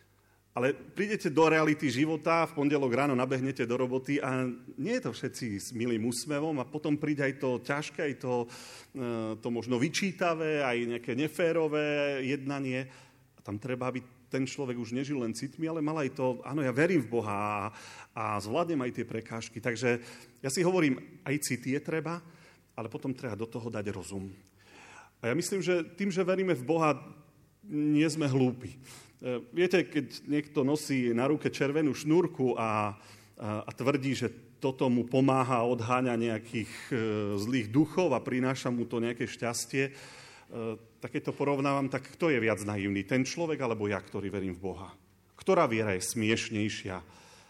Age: 40-59